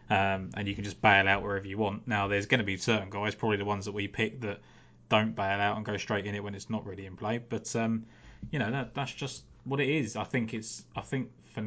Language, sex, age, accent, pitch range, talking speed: English, male, 20-39, British, 100-115 Hz, 280 wpm